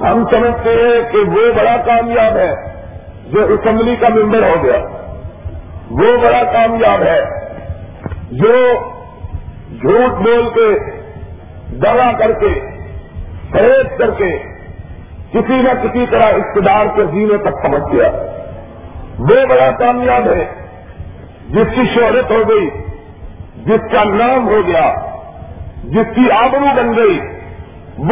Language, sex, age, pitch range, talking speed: Urdu, male, 50-69, 220-275 Hz, 120 wpm